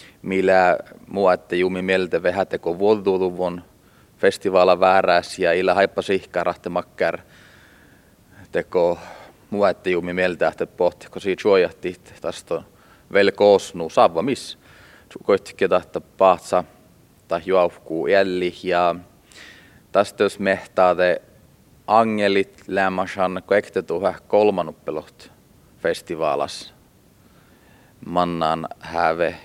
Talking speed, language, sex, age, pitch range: 80 wpm, Hungarian, male, 30-49, 85-95 Hz